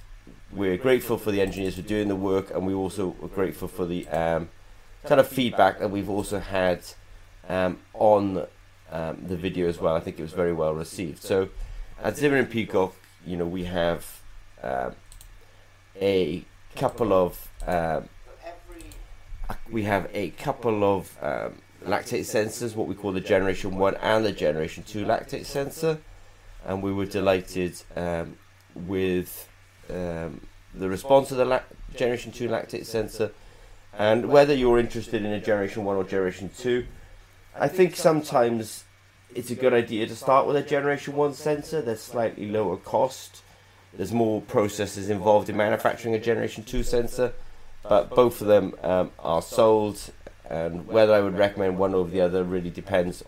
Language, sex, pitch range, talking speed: English, male, 90-110 Hz, 160 wpm